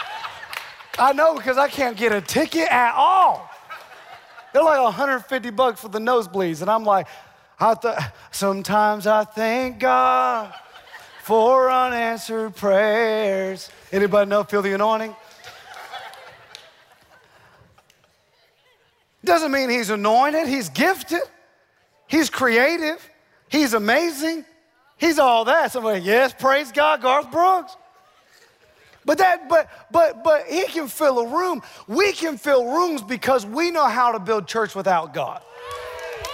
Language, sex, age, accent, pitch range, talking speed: English, male, 30-49, American, 225-290 Hz, 120 wpm